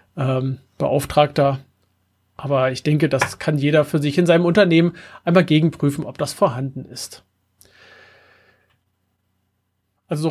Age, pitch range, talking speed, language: 30-49, 145-185 Hz, 115 wpm, German